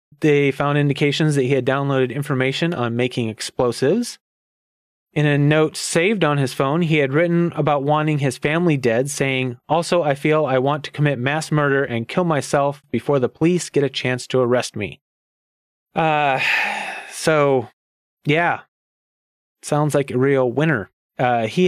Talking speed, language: 160 wpm, English